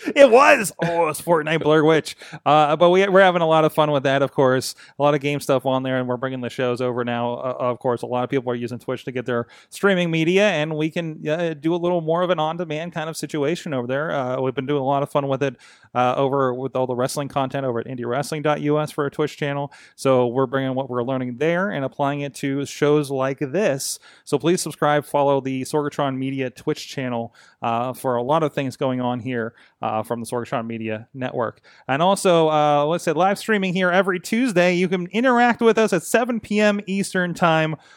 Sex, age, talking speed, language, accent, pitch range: male, 30-49, 235 wpm, English, American, 130-170 Hz